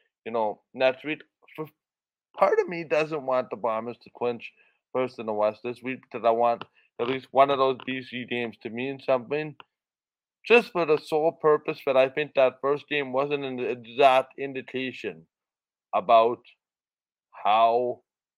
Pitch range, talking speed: 120-145 Hz, 160 wpm